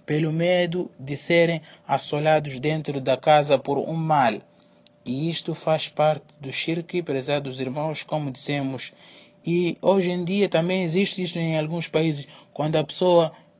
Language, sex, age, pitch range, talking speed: Portuguese, male, 20-39, 145-165 Hz, 150 wpm